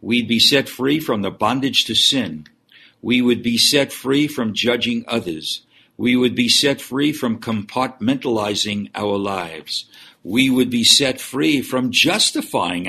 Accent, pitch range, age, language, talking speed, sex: American, 100-130 Hz, 60-79, English, 155 wpm, male